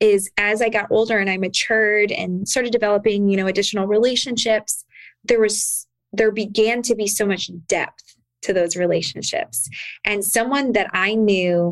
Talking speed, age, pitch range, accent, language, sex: 165 wpm, 20-39, 190-225 Hz, American, English, female